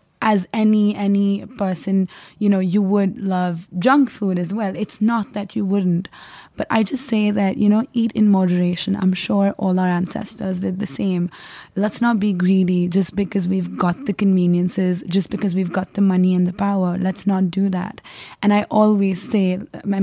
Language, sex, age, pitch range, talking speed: English, female, 20-39, 185-205 Hz, 190 wpm